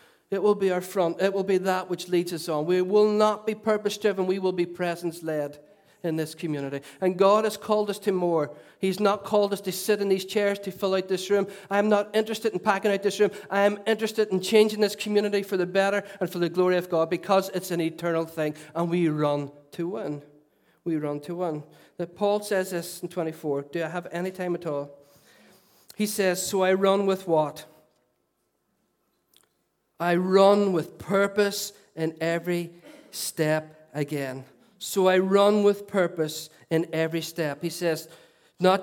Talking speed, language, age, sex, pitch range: 190 wpm, English, 50-69, male, 160-195 Hz